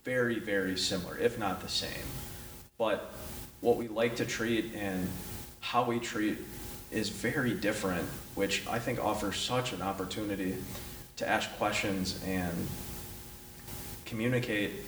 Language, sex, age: English, male, 20-39